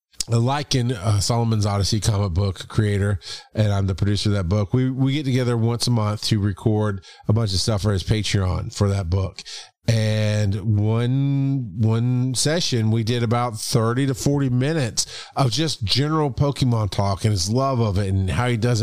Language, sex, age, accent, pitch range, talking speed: English, male, 40-59, American, 105-125 Hz, 190 wpm